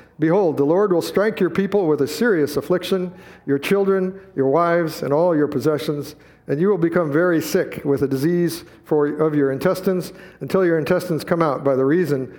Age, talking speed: 50-69, 190 wpm